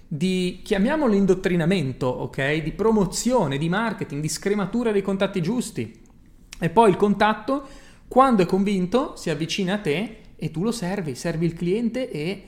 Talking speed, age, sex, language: 155 wpm, 30-49, male, Italian